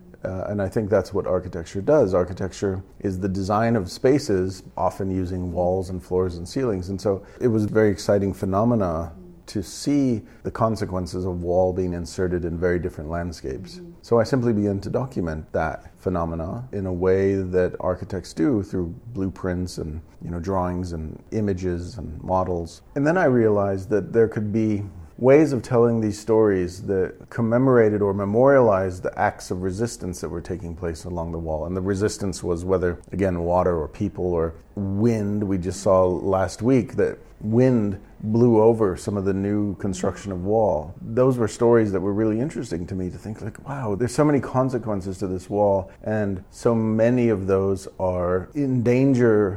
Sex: male